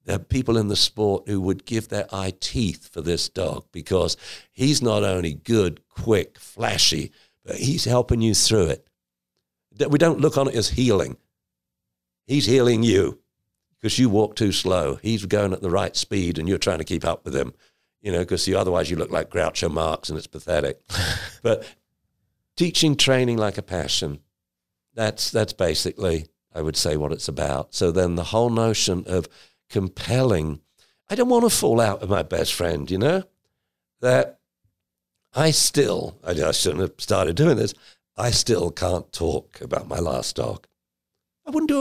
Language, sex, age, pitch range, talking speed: English, male, 50-69, 85-135 Hz, 175 wpm